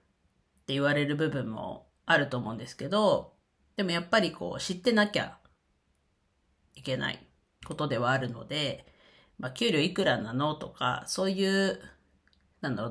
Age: 40-59